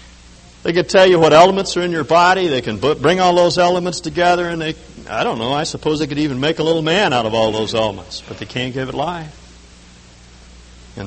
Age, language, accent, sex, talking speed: 60-79, English, American, male, 235 wpm